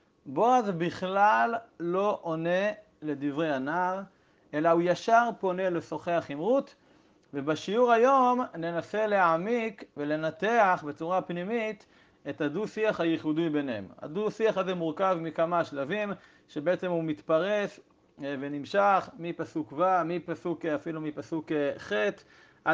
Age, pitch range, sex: 40-59, 155-200 Hz, male